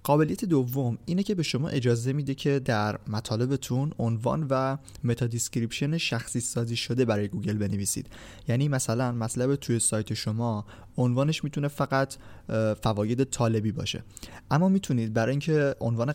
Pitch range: 110-140 Hz